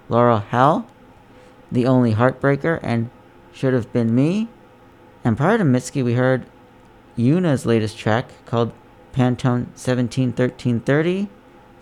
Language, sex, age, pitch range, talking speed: English, male, 40-59, 115-135 Hz, 110 wpm